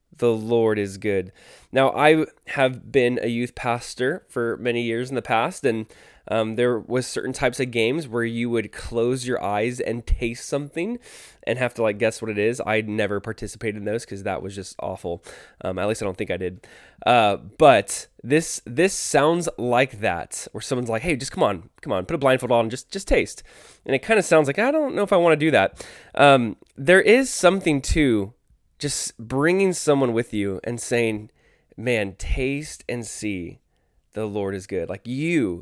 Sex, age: male, 20-39